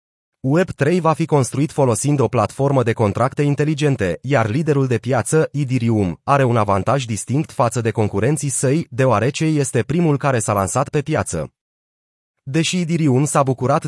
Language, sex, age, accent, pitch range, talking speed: Romanian, male, 30-49, native, 120-150 Hz, 150 wpm